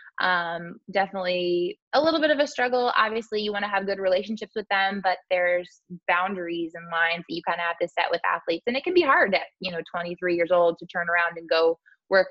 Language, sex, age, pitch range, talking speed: English, female, 20-39, 170-200 Hz, 235 wpm